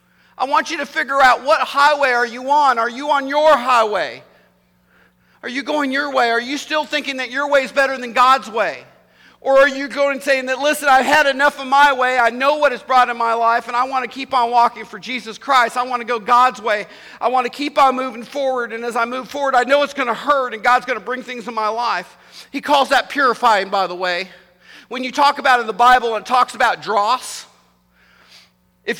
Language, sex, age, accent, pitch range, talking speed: English, male, 50-69, American, 185-260 Hz, 245 wpm